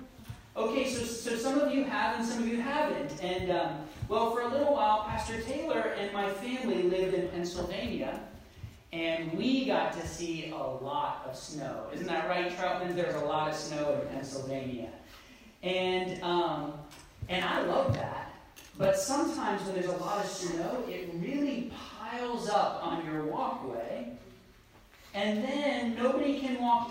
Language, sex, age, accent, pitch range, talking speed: English, male, 40-59, American, 180-250 Hz, 165 wpm